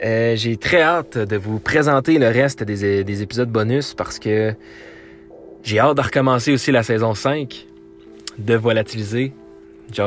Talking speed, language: 155 wpm, French